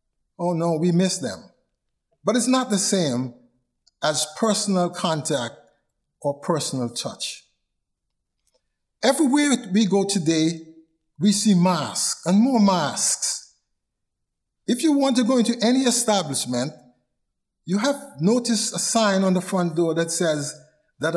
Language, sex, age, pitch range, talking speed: English, male, 50-69, 150-210 Hz, 130 wpm